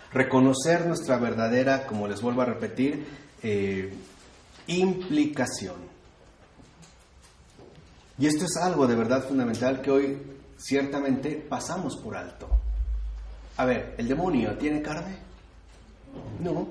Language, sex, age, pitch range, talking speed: Spanish, male, 30-49, 90-140 Hz, 110 wpm